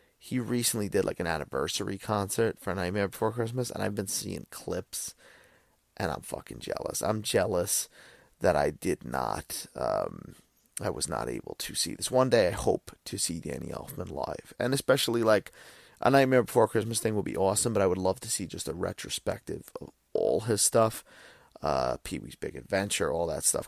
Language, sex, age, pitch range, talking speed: English, male, 30-49, 105-135 Hz, 190 wpm